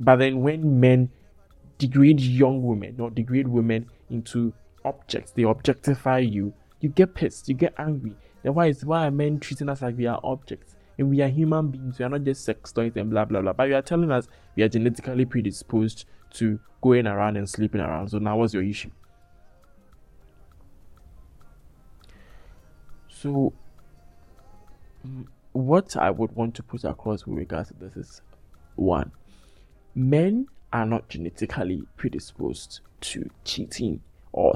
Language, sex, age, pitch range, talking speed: English, male, 20-39, 105-140 Hz, 155 wpm